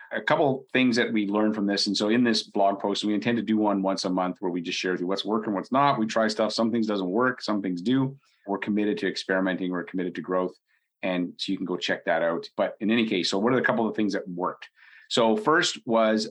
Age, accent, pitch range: 40-59, American, 95-115 Hz